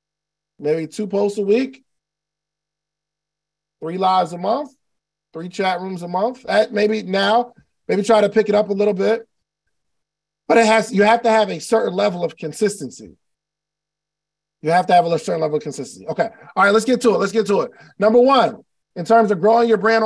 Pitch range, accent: 155-220 Hz, American